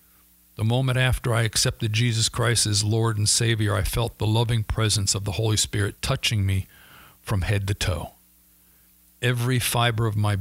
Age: 50-69